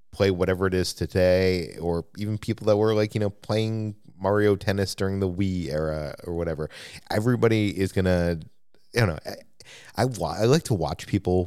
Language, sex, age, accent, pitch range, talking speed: English, male, 30-49, American, 85-105 Hz, 180 wpm